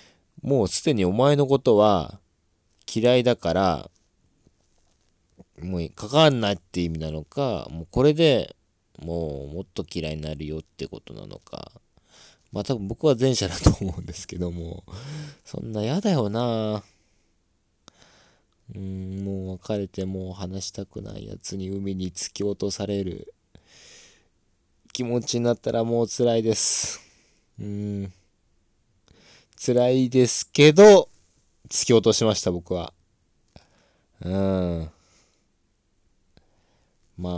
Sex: male